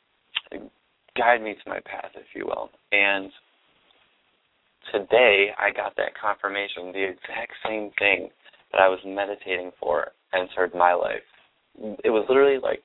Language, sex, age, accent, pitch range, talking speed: English, male, 20-39, American, 90-110 Hz, 140 wpm